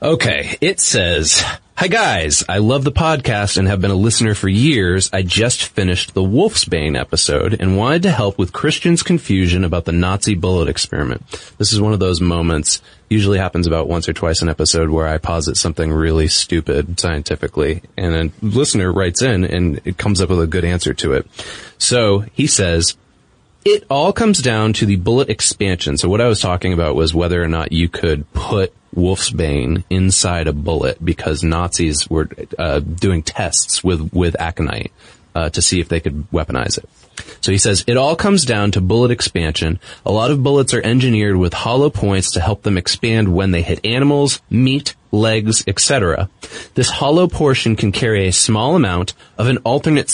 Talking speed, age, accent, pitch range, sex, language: 185 wpm, 20-39, American, 85-120 Hz, male, English